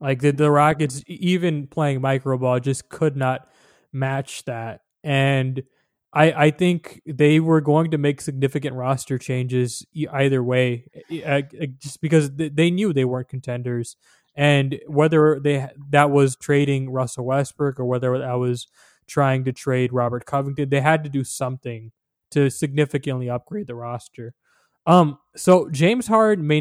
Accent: American